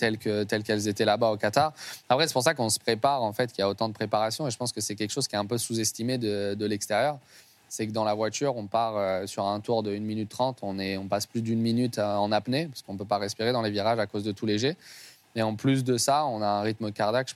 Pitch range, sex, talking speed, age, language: 105-120 Hz, male, 295 wpm, 20-39, French